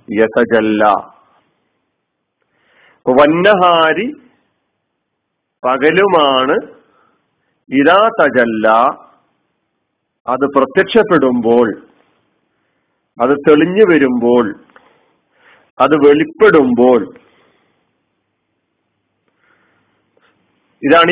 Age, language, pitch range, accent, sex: 50-69, Malayalam, 120-160 Hz, native, male